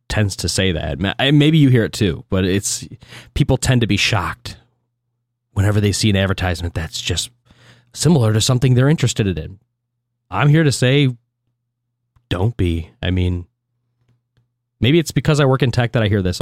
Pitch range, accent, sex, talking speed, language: 95-120 Hz, American, male, 175 wpm, English